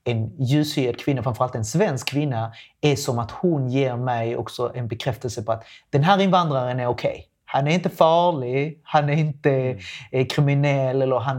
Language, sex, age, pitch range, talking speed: Swedish, male, 30-49, 120-140 Hz, 175 wpm